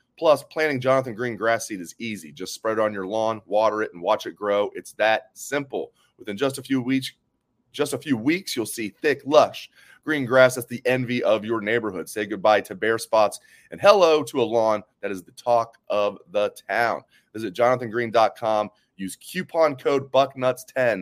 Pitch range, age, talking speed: 110-140 Hz, 30-49, 190 wpm